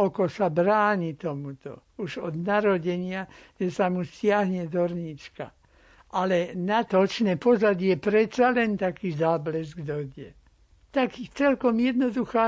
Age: 60-79